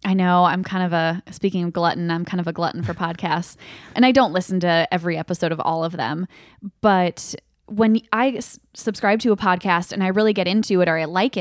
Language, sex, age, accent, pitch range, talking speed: English, female, 10-29, American, 175-200 Hz, 225 wpm